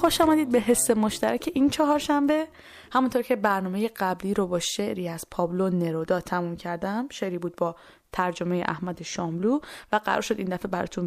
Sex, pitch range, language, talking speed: female, 190-245 Hz, Persian, 180 wpm